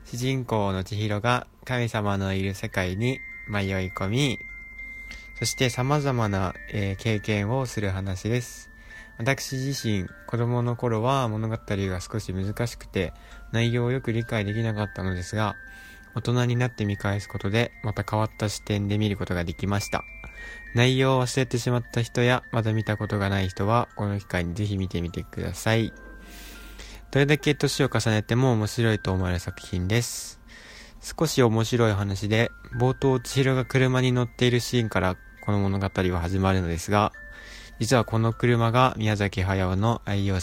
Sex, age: male, 20-39